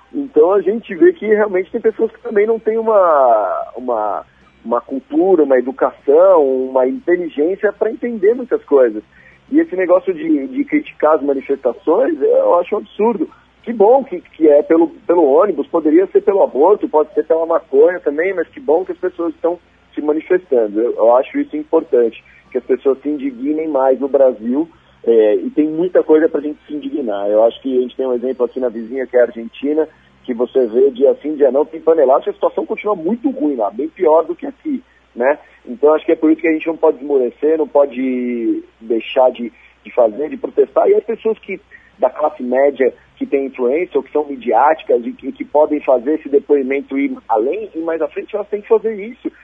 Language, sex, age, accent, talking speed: Portuguese, male, 40-59, Brazilian, 210 wpm